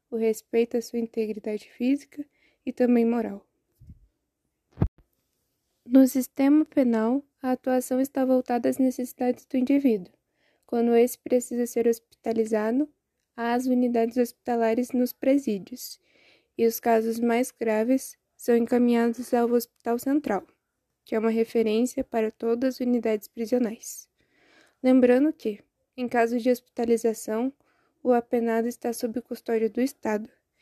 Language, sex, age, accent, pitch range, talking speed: Portuguese, female, 10-29, Brazilian, 225-250 Hz, 125 wpm